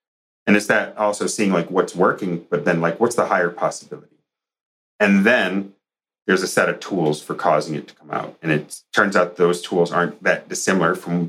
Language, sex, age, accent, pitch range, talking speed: English, male, 40-59, American, 80-90 Hz, 200 wpm